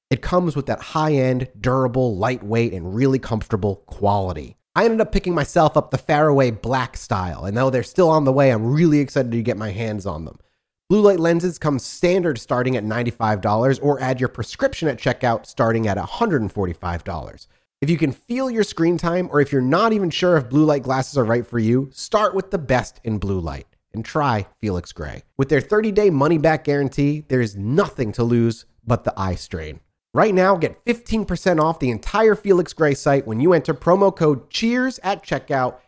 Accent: American